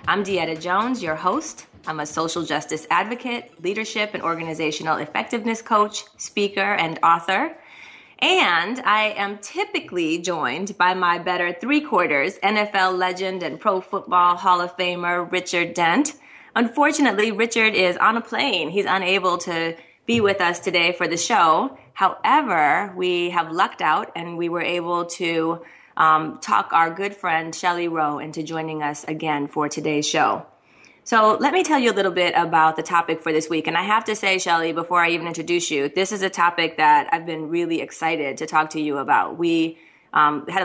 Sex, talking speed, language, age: female, 175 wpm, English, 20-39